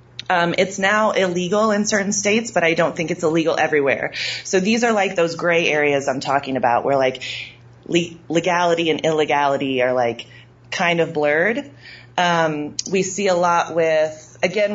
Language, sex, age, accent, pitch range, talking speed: English, female, 30-49, American, 145-185 Hz, 165 wpm